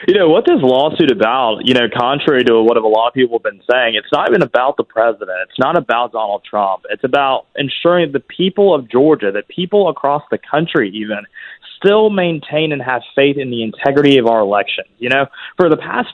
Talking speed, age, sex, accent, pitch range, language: 215 wpm, 20-39, male, American, 125-165 Hz, English